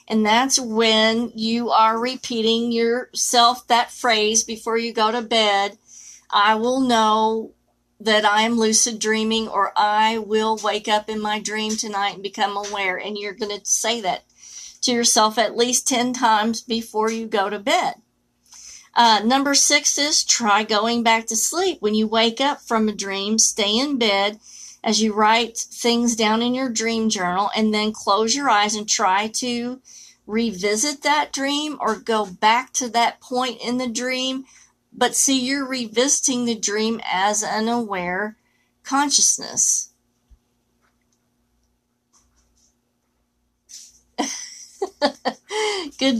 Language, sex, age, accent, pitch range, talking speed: English, female, 50-69, American, 215-250 Hz, 145 wpm